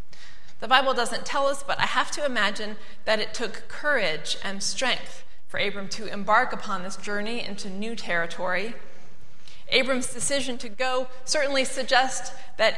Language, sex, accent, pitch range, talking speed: English, female, American, 200-255 Hz, 155 wpm